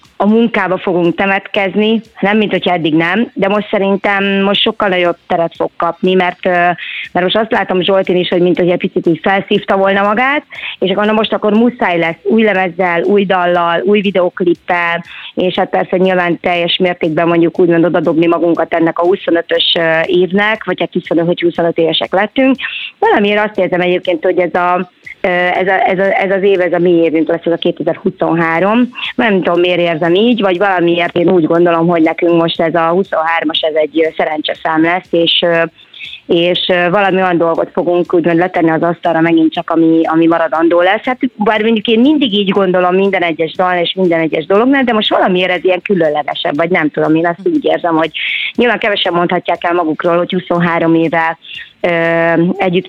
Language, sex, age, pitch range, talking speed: Hungarian, female, 30-49, 170-195 Hz, 180 wpm